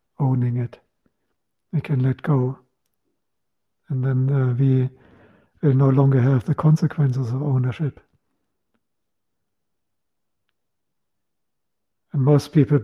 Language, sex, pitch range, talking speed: English, male, 130-145 Hz, 100 wpm